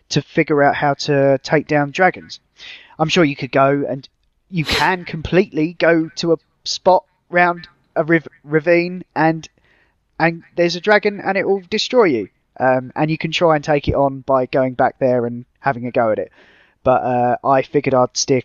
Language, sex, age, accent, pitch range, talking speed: English, male, 20-39, British, 135-175 Hz, 195 wpm